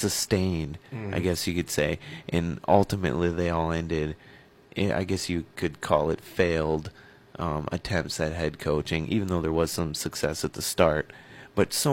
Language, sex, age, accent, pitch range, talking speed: English, male, 30-49, American, 85-125 Hz, 170 wpm